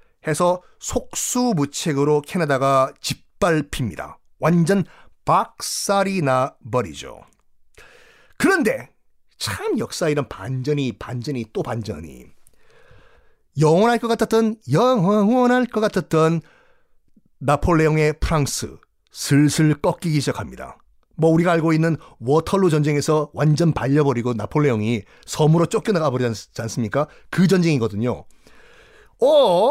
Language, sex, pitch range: Korean, male, 145-225 Hz